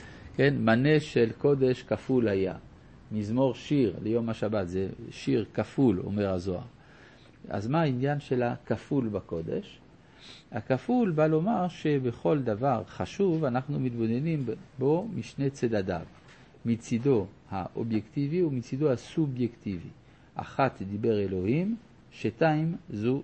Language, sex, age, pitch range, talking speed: Hebrew, male, 50-69, 110-145 Hz, 105 wpm